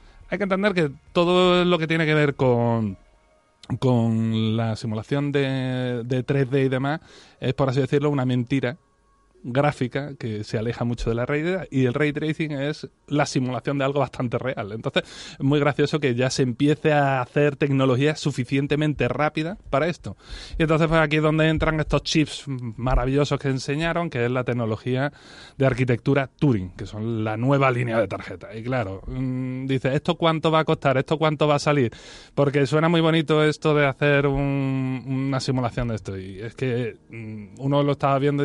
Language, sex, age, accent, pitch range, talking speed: Spanish, male, 30-49, Spanish, 120-150 Hz, 185 wpm